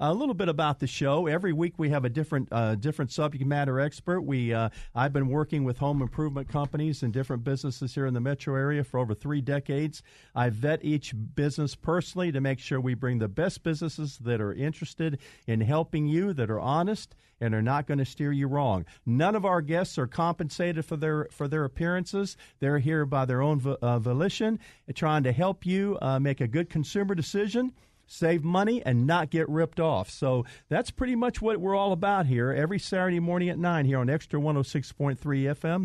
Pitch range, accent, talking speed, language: 130-165 Hz, American, 205 wpm, English